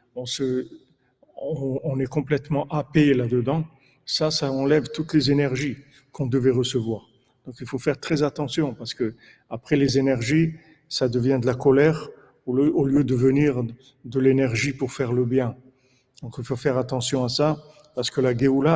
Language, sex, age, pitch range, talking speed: French, male, 50-69, 125-140 Hz, 180 wpm